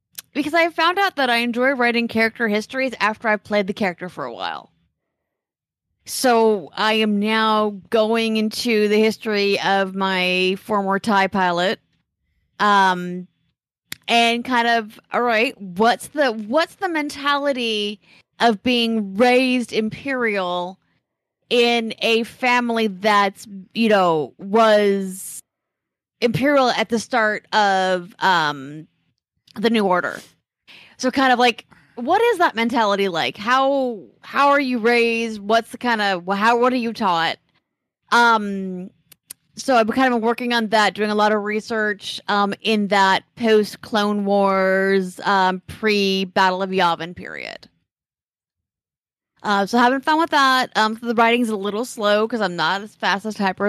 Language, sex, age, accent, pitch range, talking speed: English, female, 30-49, American, 195-240 Hz, 145 wpm